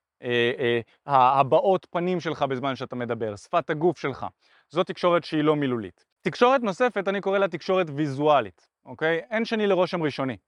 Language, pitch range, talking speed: Hebrew, 140-190 Hz, 160 wpm